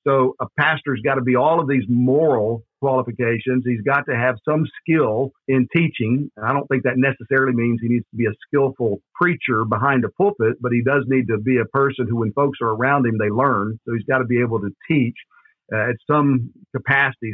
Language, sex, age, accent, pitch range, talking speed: English, male, 50-69, American, 120-145 Hz, 220 wpm